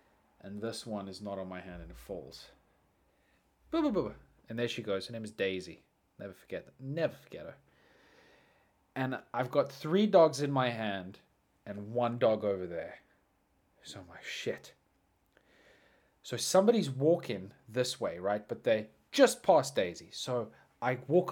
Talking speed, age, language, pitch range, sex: 170 wpm, 20-39, English, 100-170 Hz, male